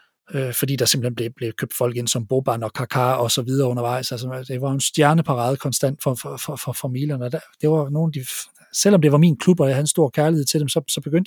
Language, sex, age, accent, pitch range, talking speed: Danish, male, 40-59, native, 130-160 Hz, 240 wpm